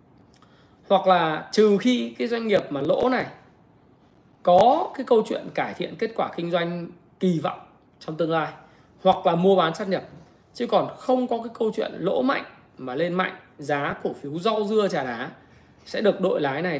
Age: 20-39